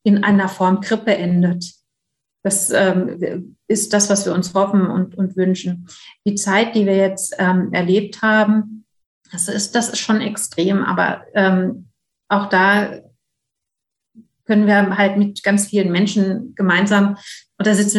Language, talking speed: German, 145 wpm